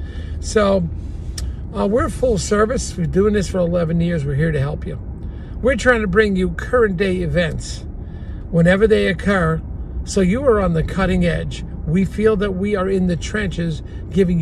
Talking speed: 185 wpm